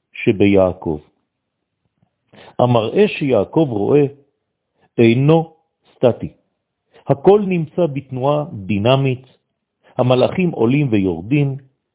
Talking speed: 65 wpm